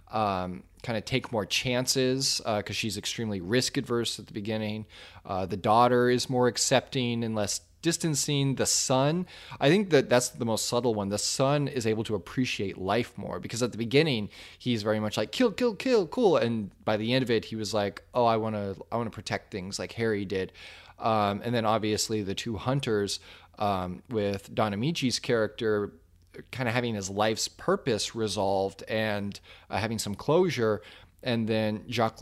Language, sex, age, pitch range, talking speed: English, male, 20-39, 100-125 Hz, 190 wpm